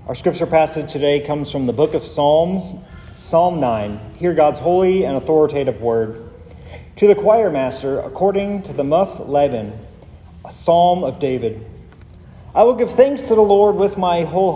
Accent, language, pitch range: American, English, 130-190 Hz